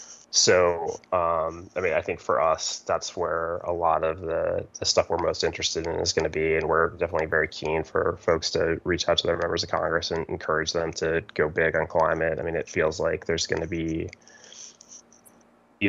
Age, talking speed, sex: 20-39, 215 wpm, male